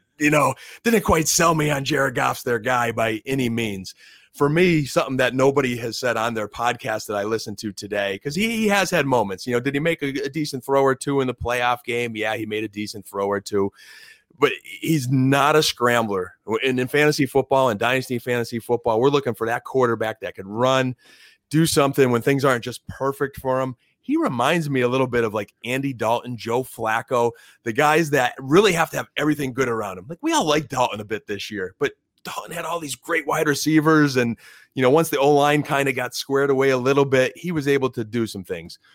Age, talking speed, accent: 30-49, 230 wpm, American